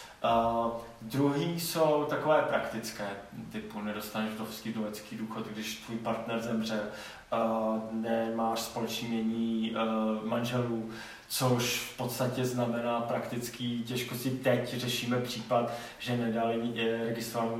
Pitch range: 115-125 Hz